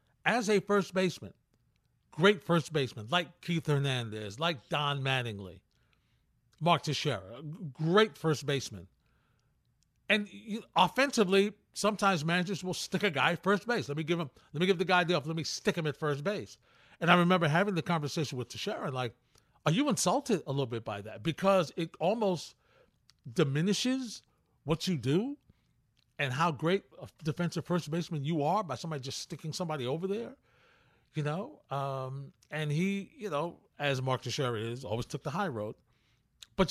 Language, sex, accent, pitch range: English, male, American, 140-195 Hz